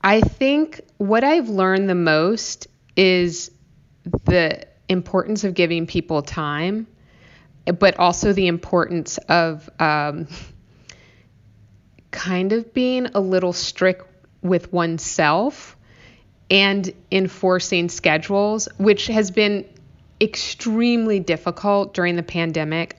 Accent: American